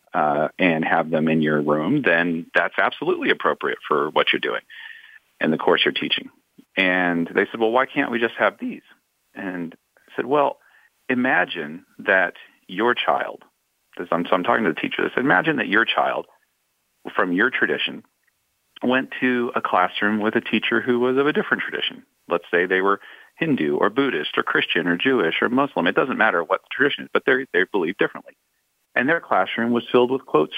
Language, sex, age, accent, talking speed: English, male, 40-59, American, 190 wpm